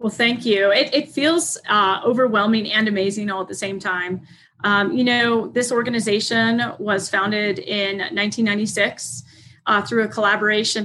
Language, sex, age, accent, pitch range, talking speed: English, female, 20-39, American, 200-225 Hz, 155 wpm